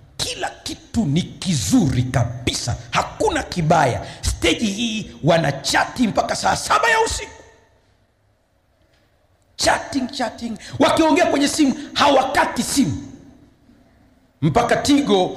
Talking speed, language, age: 95 wpm, Swahili, 50-69